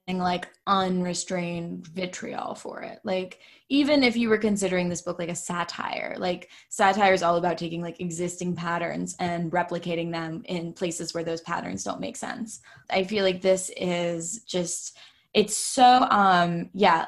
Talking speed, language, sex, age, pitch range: 160 wpm, English, female, 10-29, 175-200 Hz